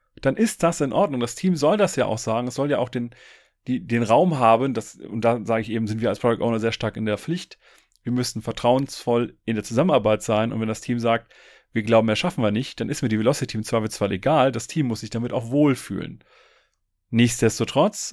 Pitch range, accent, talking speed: 110-140 Hz, German, 235 wpm